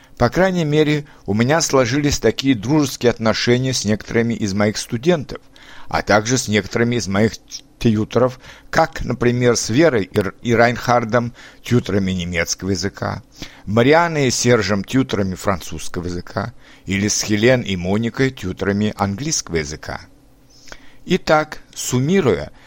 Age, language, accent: 60-79, Russian, native